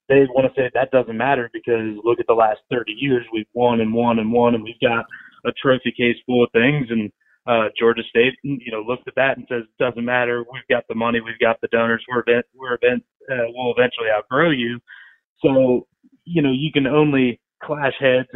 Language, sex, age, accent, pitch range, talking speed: English, male, 20-39, American, 120-130 Hz, 220 wpm